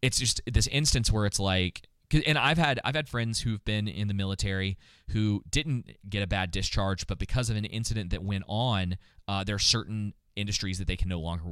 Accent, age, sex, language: American, 20-39, male, English